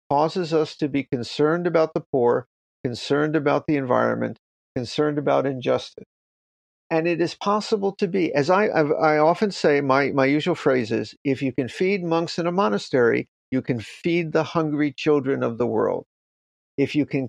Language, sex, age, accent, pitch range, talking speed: English, male, 50-69, American, 145-200 Hz, 175 wpm